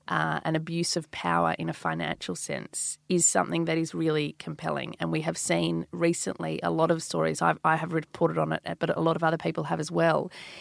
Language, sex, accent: English, female, Australian